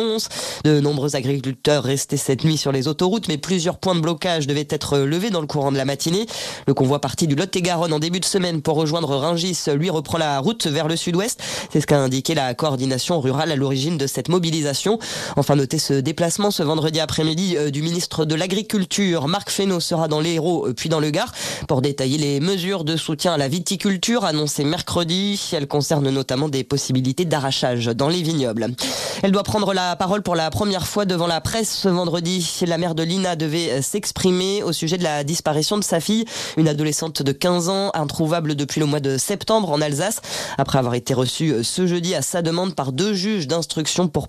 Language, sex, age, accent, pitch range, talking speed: French, female, 20-39, French, 145-185 Hz, 205 wpm